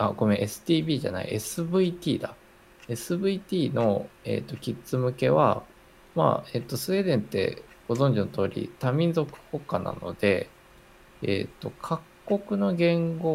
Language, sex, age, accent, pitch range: Japanese, male, 20-39, native, 105-160 Hz